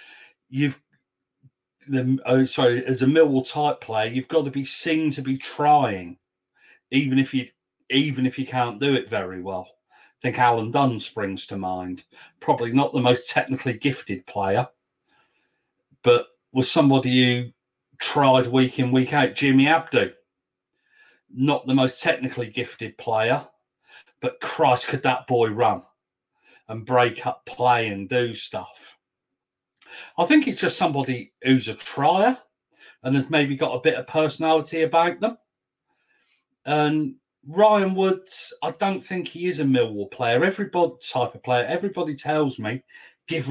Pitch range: 125-155 Hz